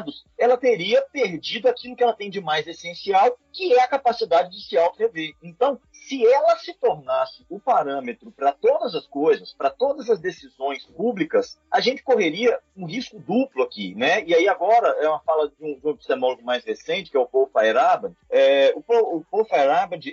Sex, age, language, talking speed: male, 40-59, Portuguese, 190 wpm